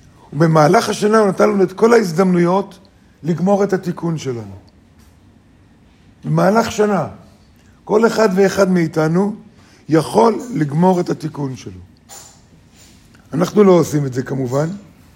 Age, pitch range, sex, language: 50-69, 130-200 Hz, male, Hebrew